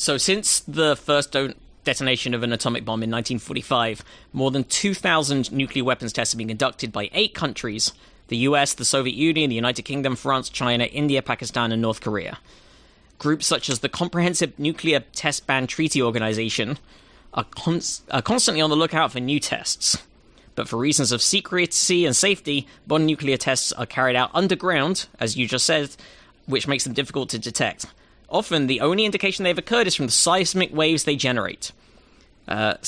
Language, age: English, 20-39